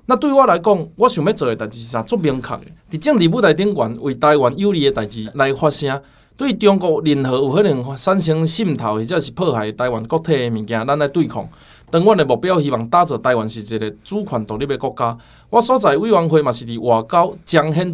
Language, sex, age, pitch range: Chinese, male, 20-39, 120-180 Hz